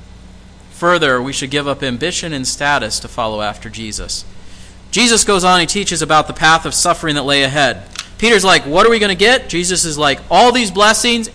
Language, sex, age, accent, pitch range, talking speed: English, male, 30-49, American, 145-220 Hz, 205 wpm